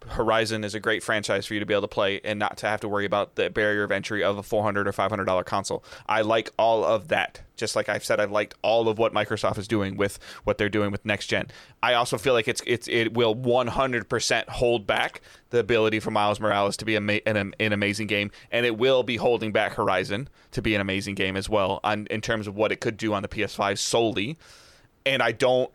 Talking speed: 250 wpm